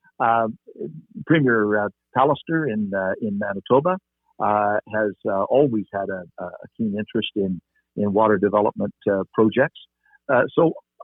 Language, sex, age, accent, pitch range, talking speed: English, male, 60-79, American, 105-130 Hz, 135 wpm